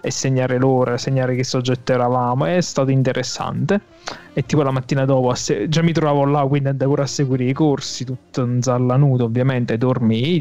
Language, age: Italian, 20-39